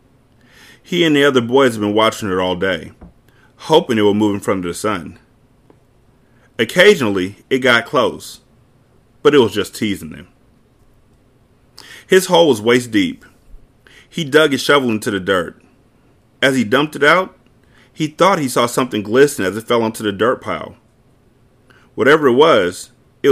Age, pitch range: 30-49, 115-145 Hz